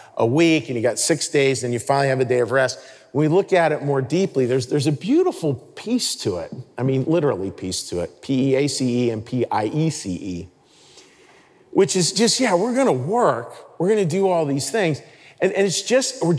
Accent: American